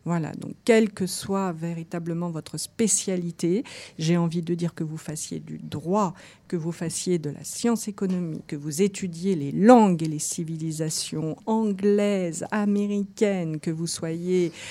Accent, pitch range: French, 160-200 Hz